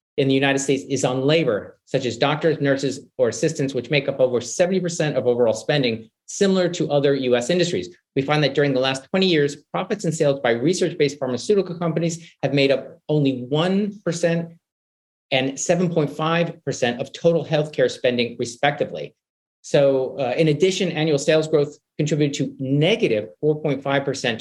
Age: 40-59